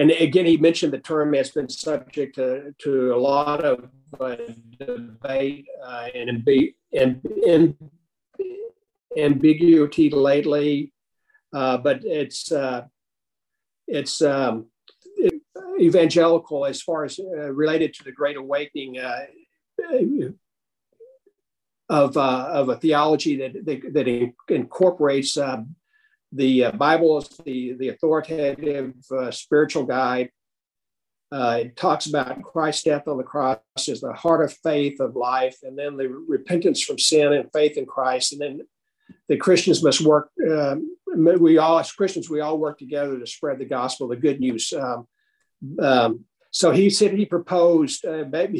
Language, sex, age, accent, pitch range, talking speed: English, male, 50-69, American, 135-165 Hz, 145 wpm